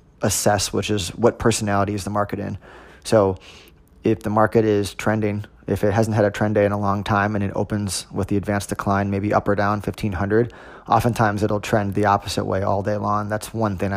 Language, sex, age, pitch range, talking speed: English, male, 20-39, 95-105 Hz, 215 wpm